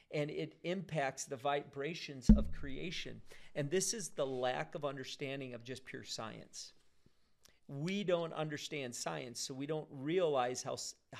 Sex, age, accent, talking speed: male, 50-69, American, 145 wpm